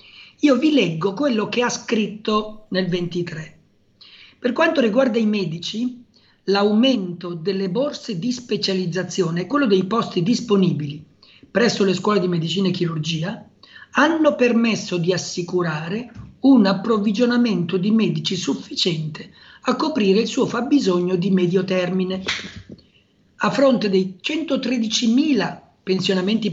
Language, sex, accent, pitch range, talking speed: Italian, male, native, 180-235 Hz, 120 wpm